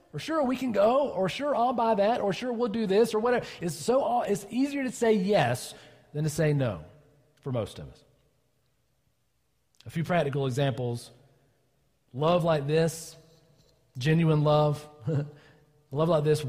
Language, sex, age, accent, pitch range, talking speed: English, male, 40-59, American, 120-155 Hz, 160 wpm